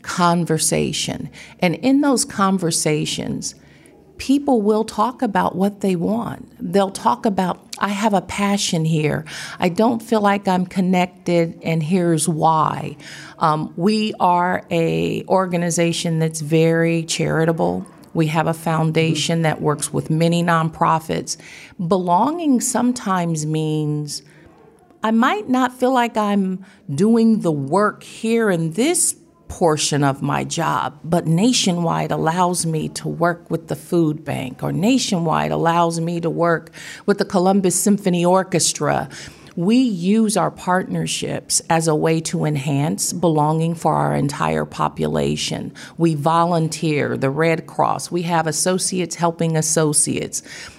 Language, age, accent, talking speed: English, 50-69, American, 130 wpm